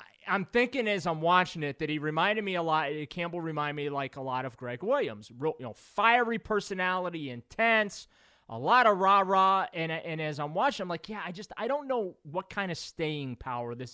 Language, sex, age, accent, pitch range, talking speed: English, male, 30-49, American, 130-180 Hz, 225 wpm